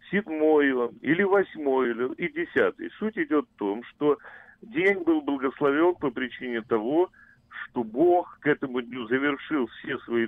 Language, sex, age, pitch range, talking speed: Russian, male, 40-59, 140-200 Hz, 140 wpm